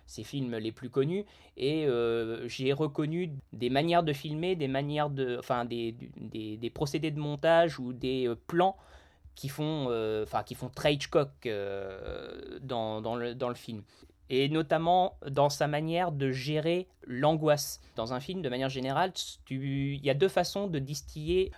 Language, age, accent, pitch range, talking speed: French, 20-39, French, 130-170 Hz, 175 wpm